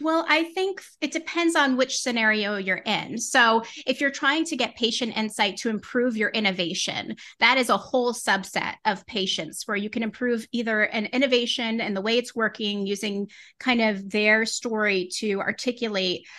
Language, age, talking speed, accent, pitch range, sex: English, 30-49, 175 wpm, American, 205-255 Hz, female